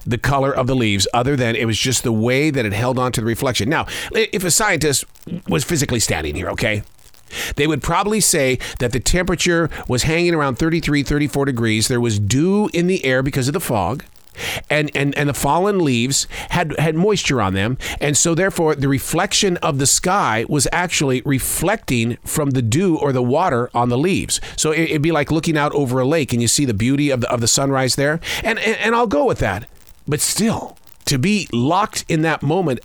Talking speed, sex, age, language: 215 wpm, male, 40-59, English